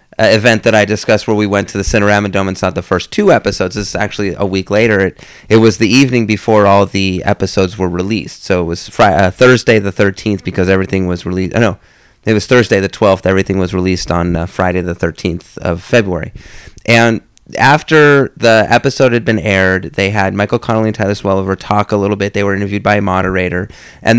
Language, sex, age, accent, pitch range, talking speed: English, male, 30-49, American, 95-115 Hz, 220 wpm